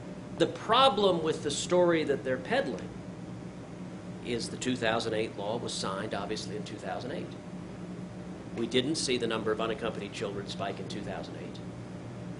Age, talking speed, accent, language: 40-59, 135 wpm, American, English